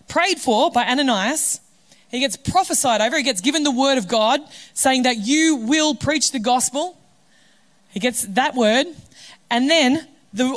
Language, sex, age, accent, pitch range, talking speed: English, female, 20-39, Australian, 220-285 Hz, 165 wpm